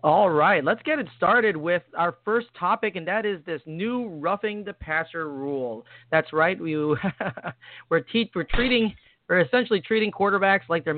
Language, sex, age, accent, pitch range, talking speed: English, male, 40-59, American, 140-180 Hz, 175 wpm